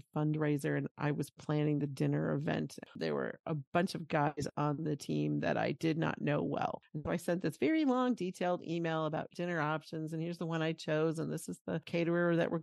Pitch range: 155-235 Hz